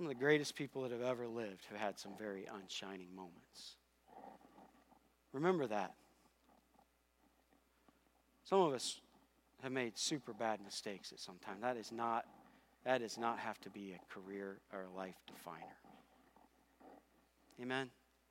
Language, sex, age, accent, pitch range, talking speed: English, male, 40-59, American, 120-175 Hz, 145 wpm